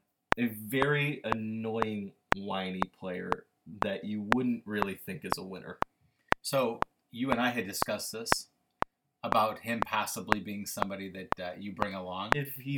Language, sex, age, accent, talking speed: English, male, 30-49, American, 150 wpm